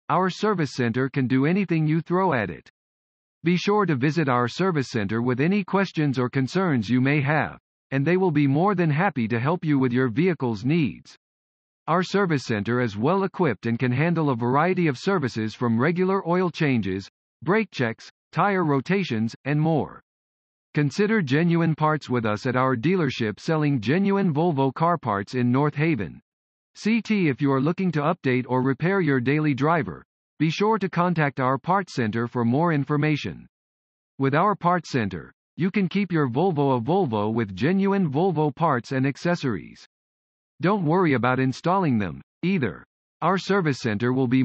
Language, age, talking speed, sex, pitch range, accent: English, 50-69, 175 wpm, male, 125-180 Hz, American